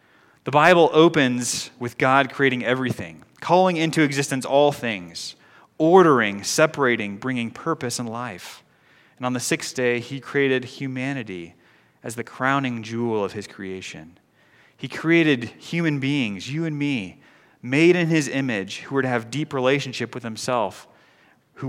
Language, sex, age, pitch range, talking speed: English, male, 30-49, 115-145 Hz, 145 wpm